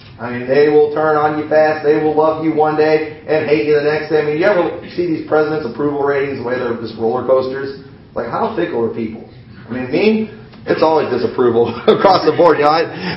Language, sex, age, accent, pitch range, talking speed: English, male, 40-59, American, 130-220 Hz, 235 wpm